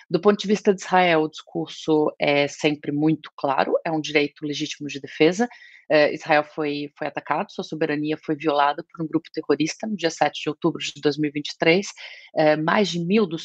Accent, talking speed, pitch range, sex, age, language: Brazilian, 185 wpm, 155-180 Hz, female, 30-49, Portuguese